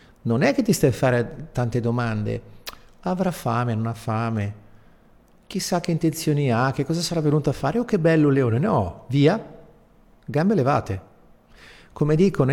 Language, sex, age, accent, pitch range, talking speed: Italian, male, 50-69, native, 110-160 Hz, 170 wpm